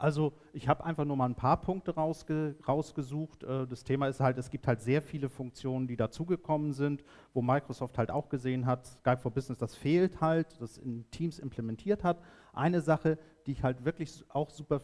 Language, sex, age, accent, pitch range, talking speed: German, male, 50-69, German, 125-155 Hz, 200 wpm